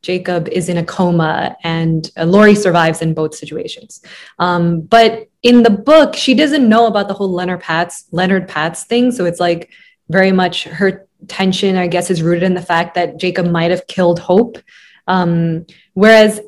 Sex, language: female, English